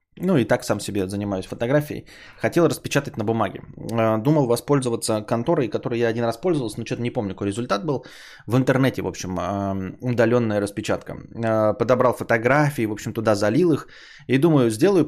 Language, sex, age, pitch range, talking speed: Bulgarian, male, 20-39, 105-135 Hz, 165 wpm